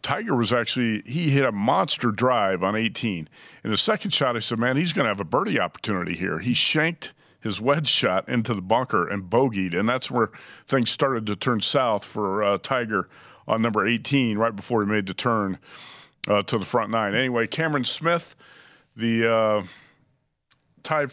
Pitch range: 115-135 Hz